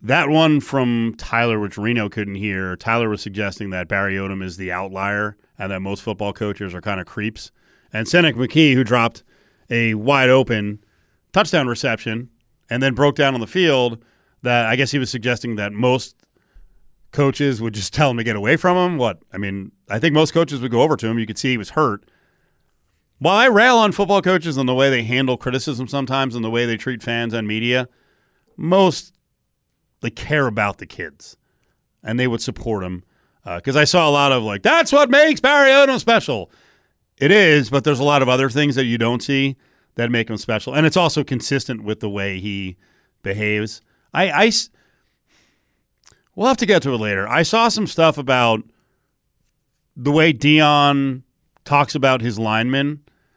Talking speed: 190 wpm